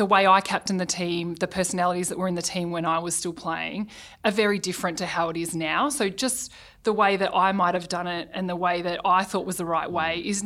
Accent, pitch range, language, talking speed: Australian, 175-200 Hz, English, 265 wpm